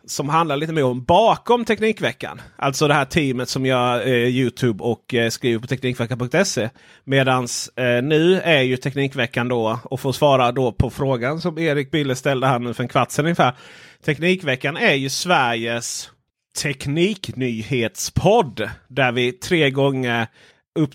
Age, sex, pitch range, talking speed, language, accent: 30-49, male, 120-155 Hz, 150 wpm, Swedish, native